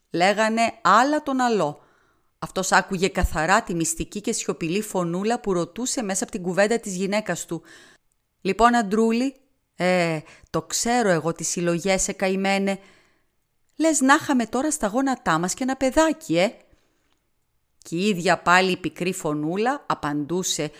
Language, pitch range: Greek, 175-245 Hz